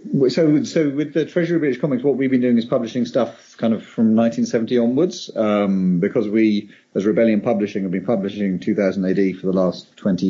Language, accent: English, British